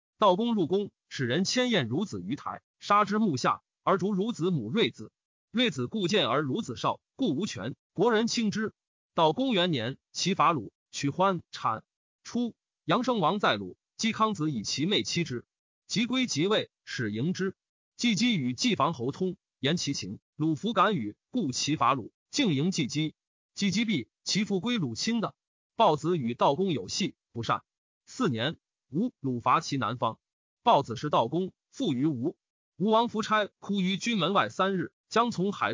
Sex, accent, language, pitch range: male, native, Chinese, 155-220 Hz